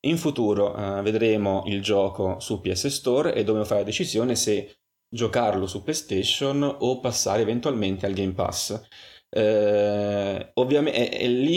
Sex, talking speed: male, 150 wpm